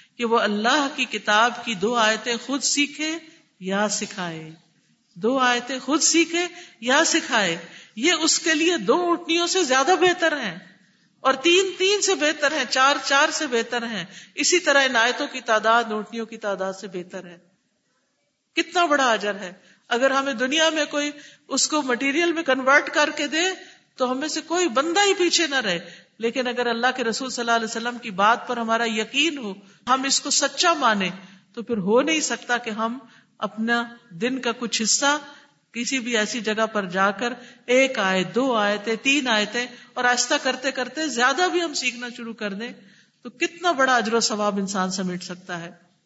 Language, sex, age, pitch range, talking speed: Urdu, female, 50-69, 215-290 Hz, 185 wpm